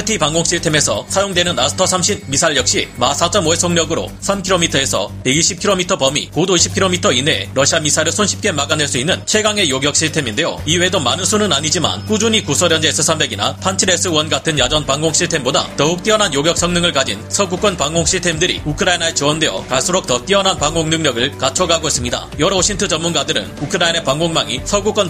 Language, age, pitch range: Korean, 30-49, 145-185 Hz